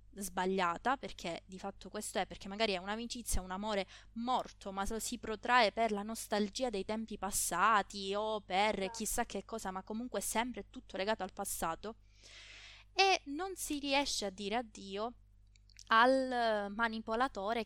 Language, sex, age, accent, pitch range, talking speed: Italian, female, 20-39, native, 185-225 Hz, 145 wpm